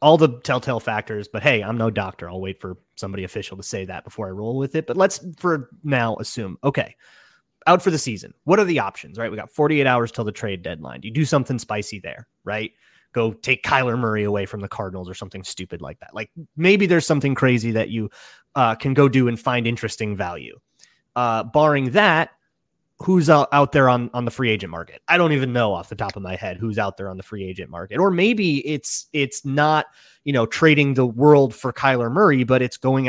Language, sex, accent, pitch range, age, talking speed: English, male, American, 110-150 Hz, 30-49, 225 wpm